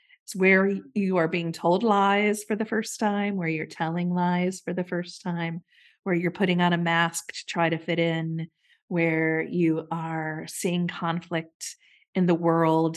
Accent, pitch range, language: American, 165-210 Hz, English